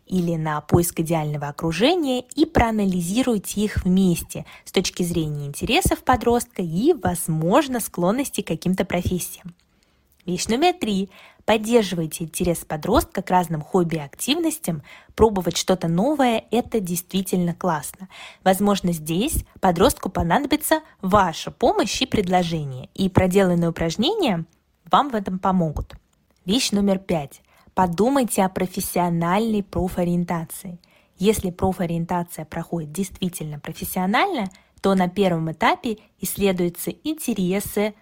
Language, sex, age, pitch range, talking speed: Russian, female, 20-39, 170-215 Hz, 105 wpm